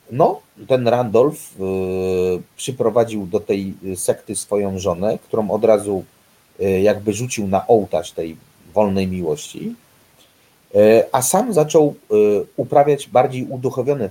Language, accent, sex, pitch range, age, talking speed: Polish, native, male, 100-140 Hz, 30-49, 125 wpm